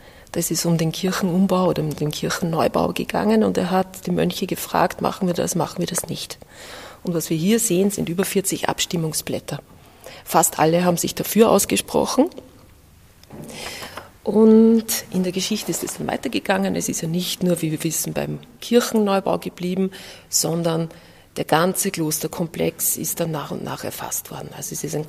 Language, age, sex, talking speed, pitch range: German, 40-59, female, 170 wpm, 165-205 Hz